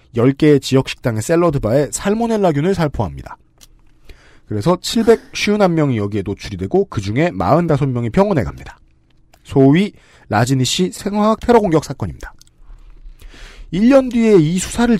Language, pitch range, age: Korean, 115-195 Hz, 40-59